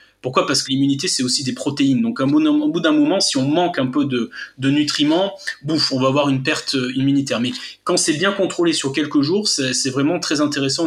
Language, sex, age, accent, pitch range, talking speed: French, male, 20-39, French, 125-180 Hz, 225 wpm